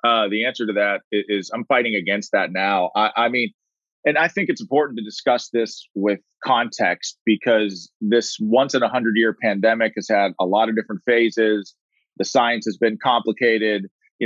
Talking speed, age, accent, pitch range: 195 wpm, 30-49, American, 100-120 Hz